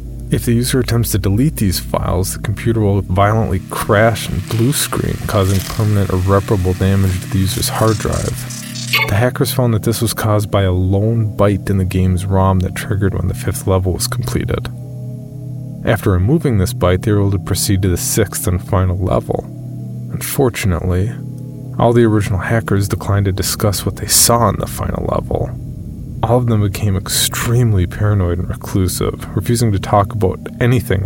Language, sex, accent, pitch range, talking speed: English, male, American, 95-125 Hz, 175 wpm